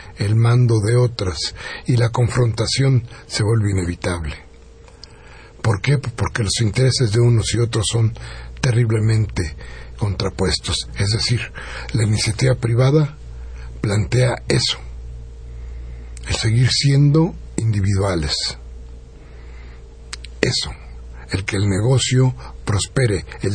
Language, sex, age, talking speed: Spanish, male, 60-79, 100 wpm